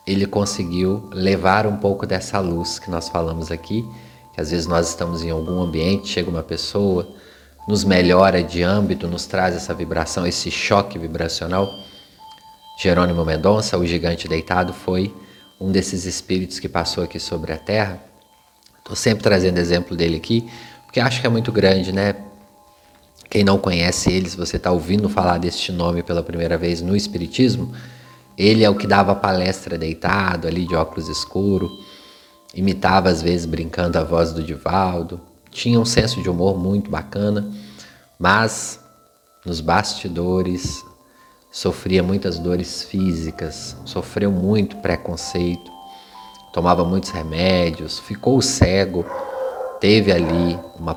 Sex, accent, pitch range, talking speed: male, Brazilian, 85-100 Hz, 140 wpm